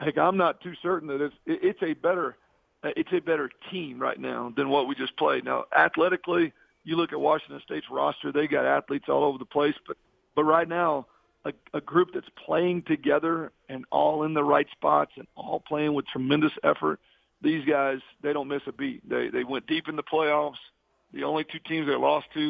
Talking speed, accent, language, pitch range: 210 wpm, American, English, 140-160 Hz